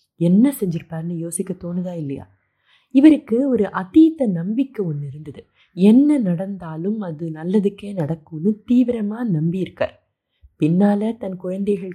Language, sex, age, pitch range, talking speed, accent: Tamil, female, 20-39, 165-225 Hz, 105 wpm, native